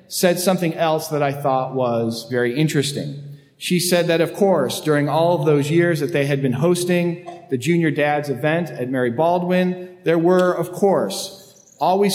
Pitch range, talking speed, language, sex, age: 130-175 Hz, 180 wpm, English, male, 40-59